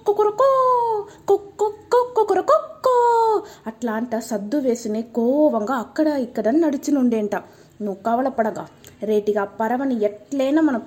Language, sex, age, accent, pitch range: Telugu, female, 20-39, native, 215-275 Hz